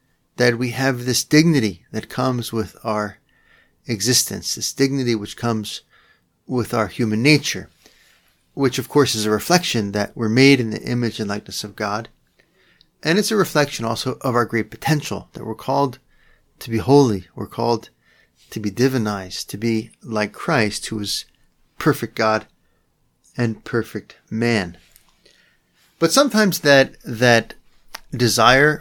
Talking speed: 145 wpm